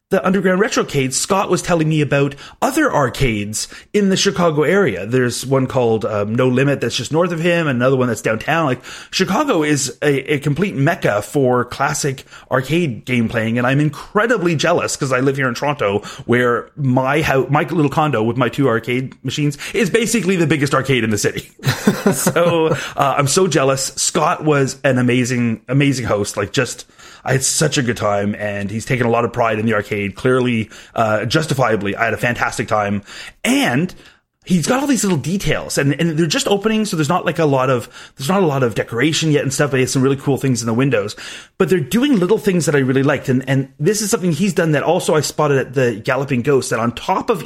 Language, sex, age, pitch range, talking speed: English, male, 30-49, 125-170 Hz, 220 wpm